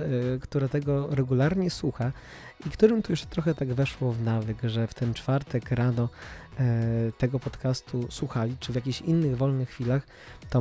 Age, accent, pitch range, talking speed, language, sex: 20-39, native, 125-145 Hz, 160 wpm, Polish, male